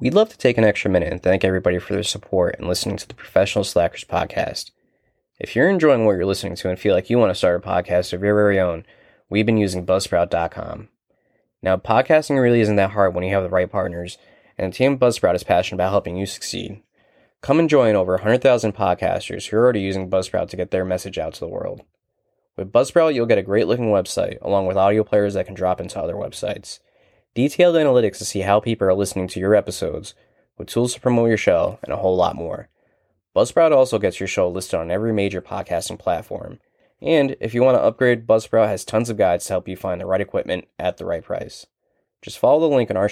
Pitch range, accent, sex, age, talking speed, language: 90-115 Hz, American, male, 20-39, 230 wpm, English